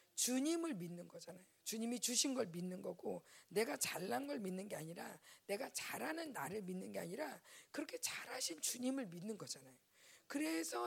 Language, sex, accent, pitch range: Korean, female, native, 195-295 Hz